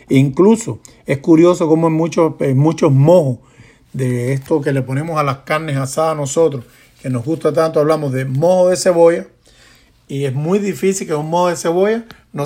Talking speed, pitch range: 190 wpm, 135-165 Hz